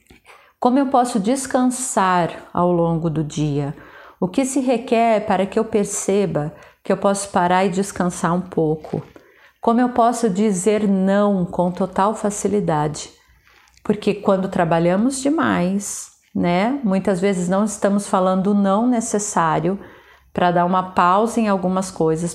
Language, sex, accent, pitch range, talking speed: Portuguese, female, Brazilian, 180-215 Hz, 140 wpm